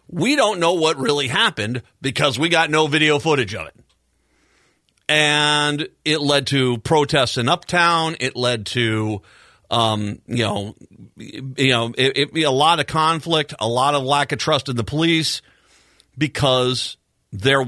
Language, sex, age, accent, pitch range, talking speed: English, male, 40-59, American, 115-150 Hz, 160 wpm